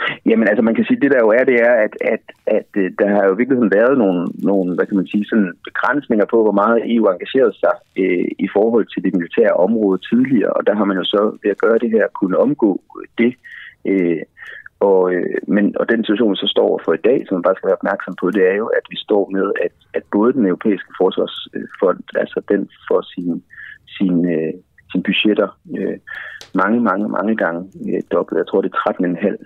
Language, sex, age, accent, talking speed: Danish, male, 30-49, native, 215 wpm